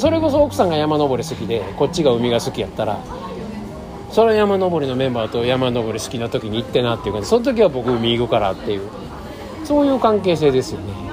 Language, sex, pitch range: Japanese, male, 115-175 Hz